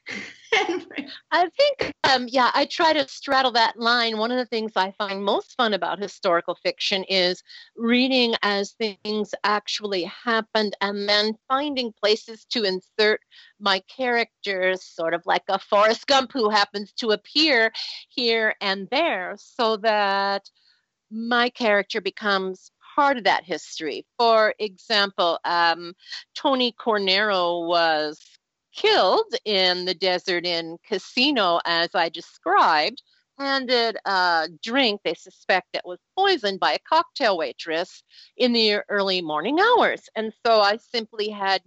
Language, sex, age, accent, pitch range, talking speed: English, female, 50-69, American, 185-245 Hz, 135 wpm